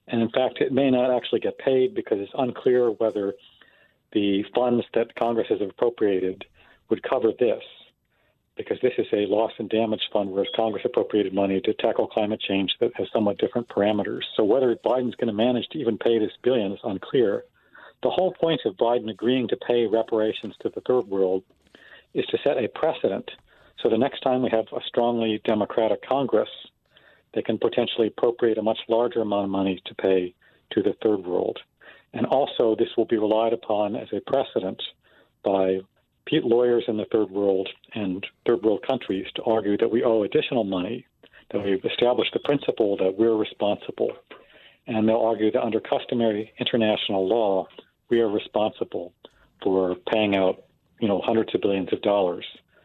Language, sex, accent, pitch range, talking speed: English, male, American, 100-120 Hz, 175 wpm